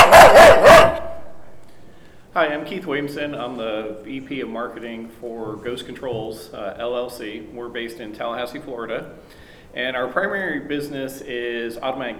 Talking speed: 125 wpm